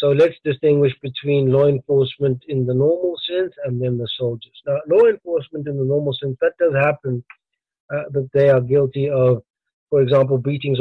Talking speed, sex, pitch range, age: 185 wpm, male, 130-165 Hz, 50-69